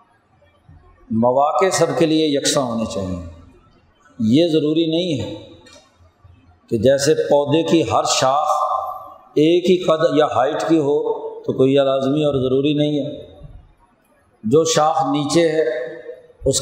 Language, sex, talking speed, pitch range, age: Urdu, male, 130 wpm, 140-165 Hz, 50-69